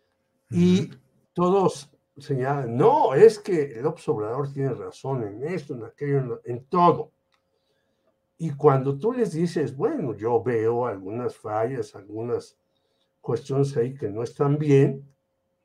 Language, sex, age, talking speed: Spanish, male, 60-79, 135 wpm